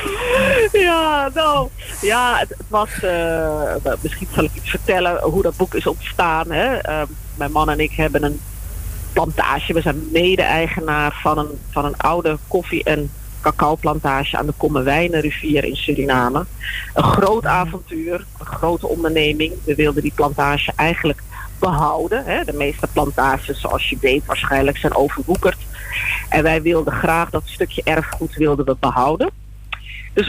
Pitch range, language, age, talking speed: 150-205 Hz, Dutch, 40-59, 145 wpm